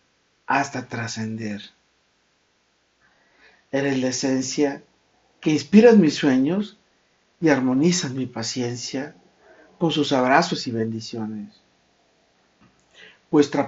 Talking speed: 85 wpm